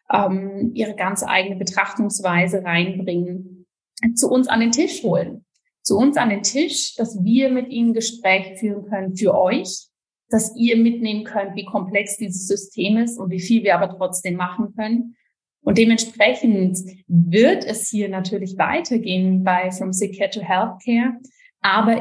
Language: German